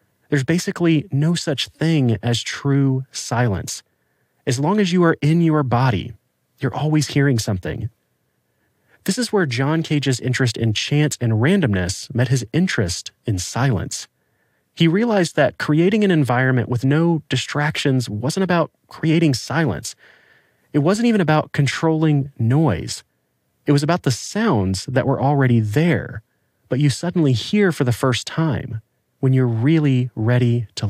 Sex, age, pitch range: male, 30-49, 115-155 Hz